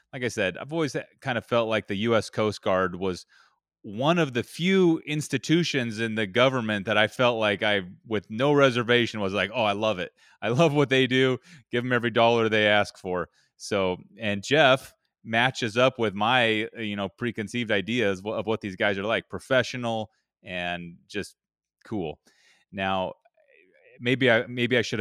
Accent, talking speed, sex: American, 175 wpm, male